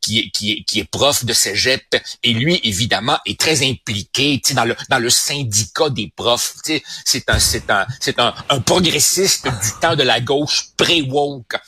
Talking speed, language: 190 wpm, French